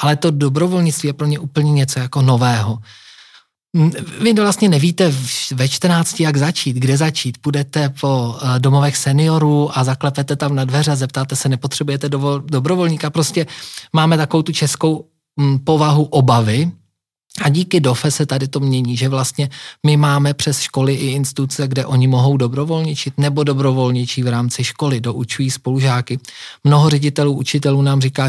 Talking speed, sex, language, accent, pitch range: 150 wpm, male, Czech, native, 125-150 Hz